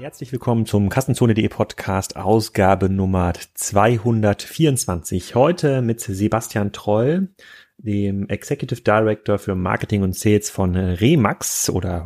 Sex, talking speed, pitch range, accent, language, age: male, 110 wpm, 100-125 Hz, German, German, 30-49